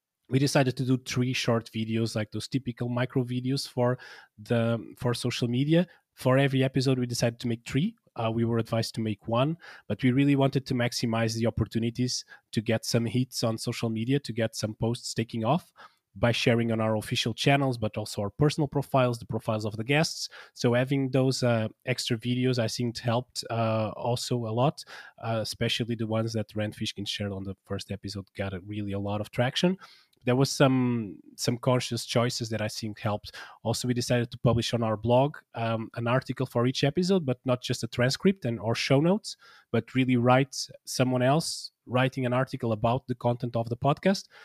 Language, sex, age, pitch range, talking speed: English, male, 20-39, 110-130 Hz, 200 wpm